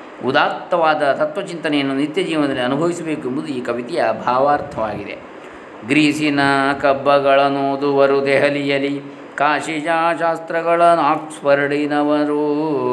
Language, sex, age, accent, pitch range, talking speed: Kannada, male, 20-39, native, 135-170 Hz, 70 wpm